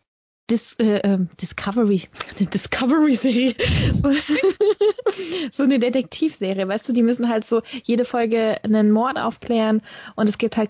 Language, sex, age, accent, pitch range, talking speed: German, female, 20-39, German, 205-255 Hz, 120 wpm